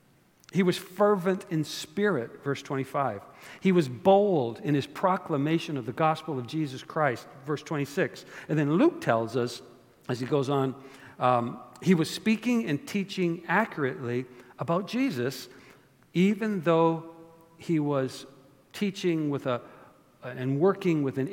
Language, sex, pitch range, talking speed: English, male, 130-170 Hz, 140 wpm